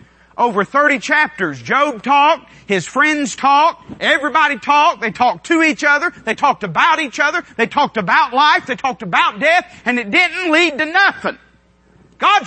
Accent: American